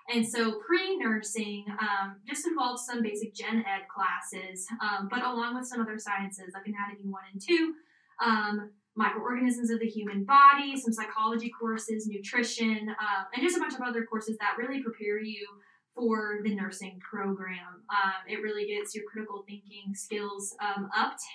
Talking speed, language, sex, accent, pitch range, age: 165 wpm, English, female, American, 205-240 Hz, 10-29